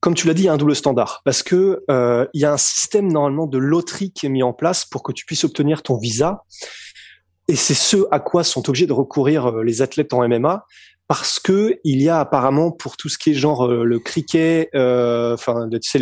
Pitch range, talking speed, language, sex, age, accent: 130-160 Hz, 245 wpm, French, male, 20-39, French